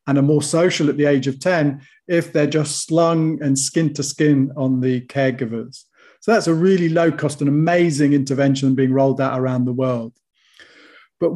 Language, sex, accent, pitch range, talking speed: English, male, British, 140-170 Hz, 190 wpm